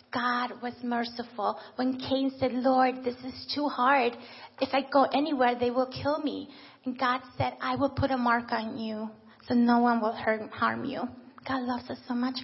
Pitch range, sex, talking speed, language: 235-265 Hz, female, 195 wpm, English